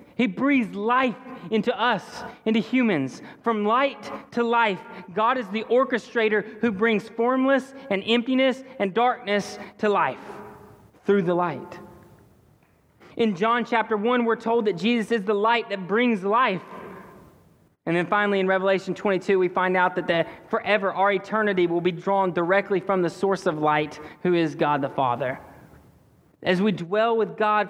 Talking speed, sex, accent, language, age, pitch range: 160 wpm, male, American, English, 30-49, 170-225 Hz